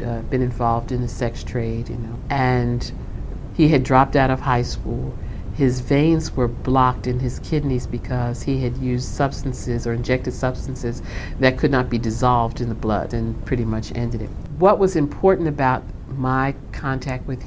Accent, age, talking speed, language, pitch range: American, 50-69, 180 wpm, English, 115-135 Hz